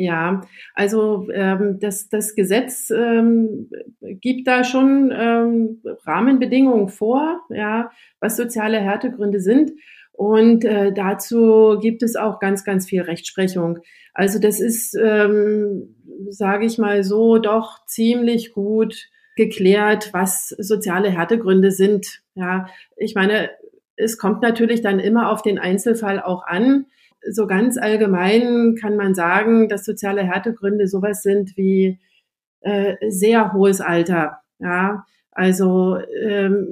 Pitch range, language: 200-230 Hz, German